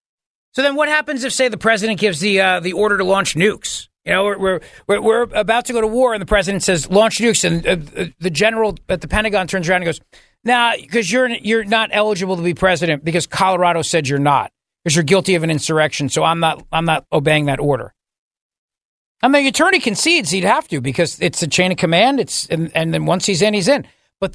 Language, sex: English, male